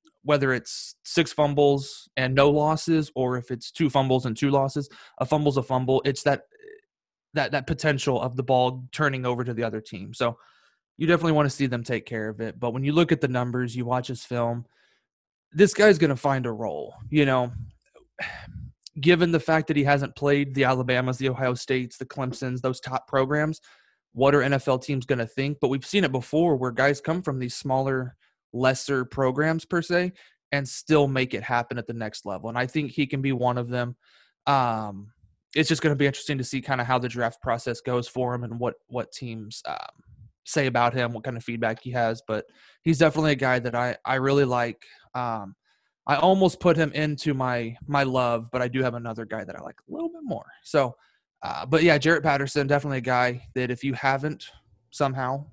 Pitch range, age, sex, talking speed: 125-145 Hz, 20-39, male, 215 wpm